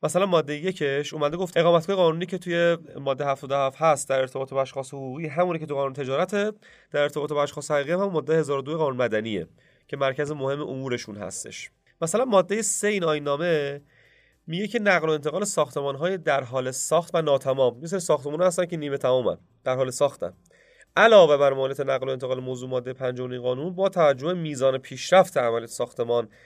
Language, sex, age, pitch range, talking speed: Persian, male, 30-49, 130-170 Hz, 175 wpm